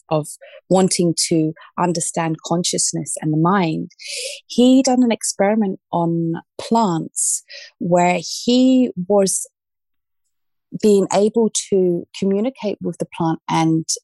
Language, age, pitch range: English, 30-49, 165-215 Hz